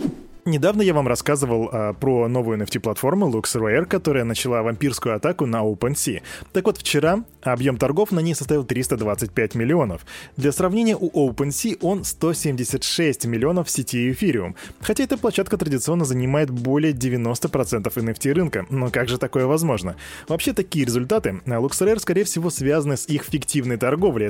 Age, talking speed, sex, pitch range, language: 20-39, 145 wpm, male, 115-175 Hz, Russian